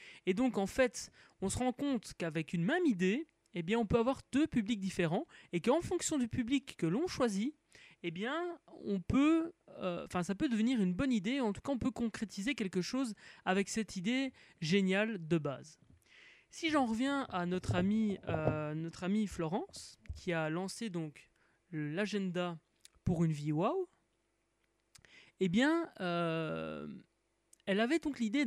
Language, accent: French, French